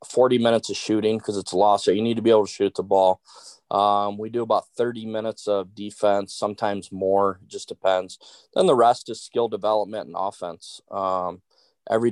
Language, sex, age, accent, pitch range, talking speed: English, male, 20-39, American, 95-110 Hz, 200 wpm